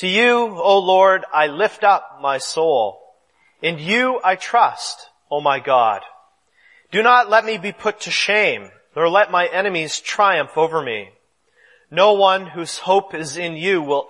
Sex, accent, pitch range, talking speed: male, American, 160-215 Hz, 165 wpm